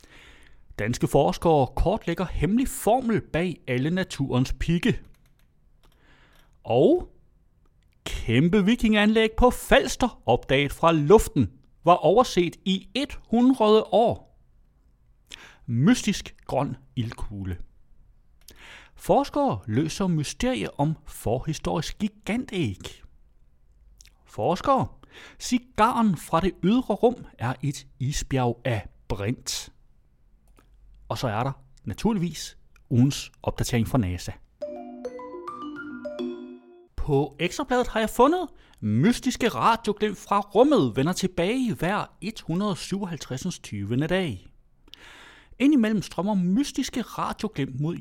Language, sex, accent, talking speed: Danish, male, native, 90 wpm